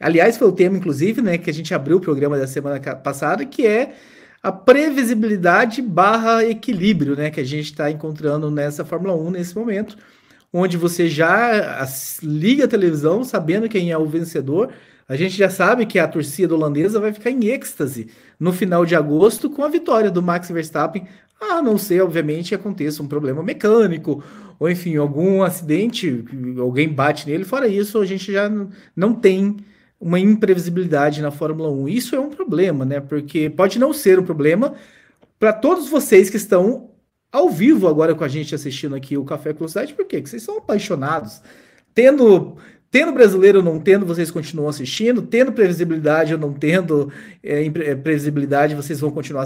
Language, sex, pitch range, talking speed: Portuguese, male, 150-220 Hz, 180 wpm